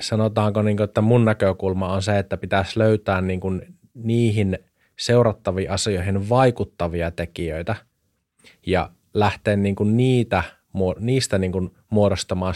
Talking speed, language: 85 wpm, Finnish